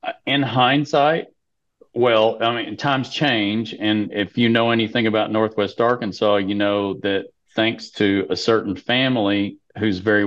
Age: 40-59